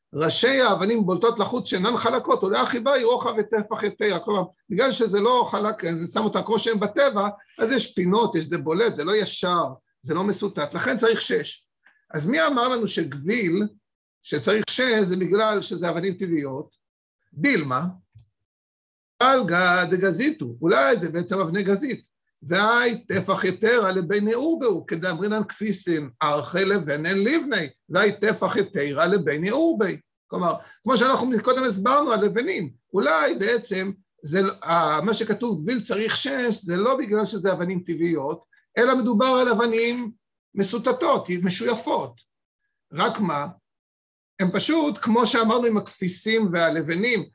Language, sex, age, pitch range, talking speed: Hebrew, male, 50-69, 180-235 Hz, 135 wpm